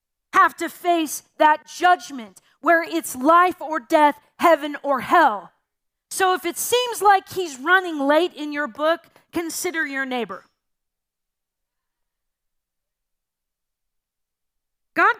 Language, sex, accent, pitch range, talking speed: English, female, American, 205-330 Hz, 110 wpm